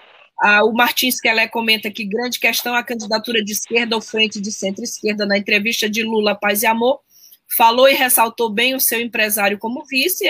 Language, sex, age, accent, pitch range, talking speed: Portuguese, female, 20-39, Brazilian, 220-265 Hz, 185 wpm